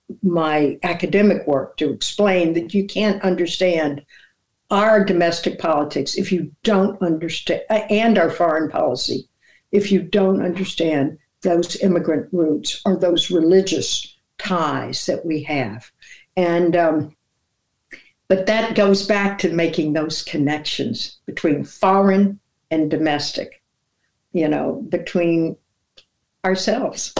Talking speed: 115 wpm